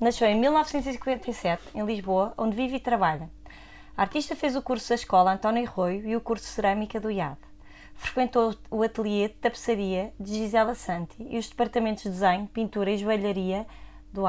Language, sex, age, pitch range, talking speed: Portuguese, female, 20-39, 200-235 Hz, 180 wpm